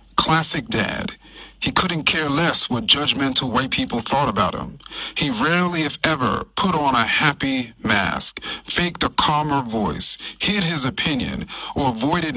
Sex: male